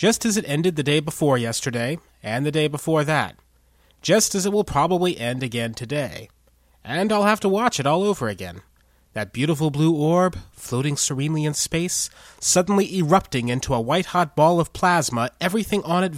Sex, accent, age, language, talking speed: male, American, 30-49, English, 180 wpm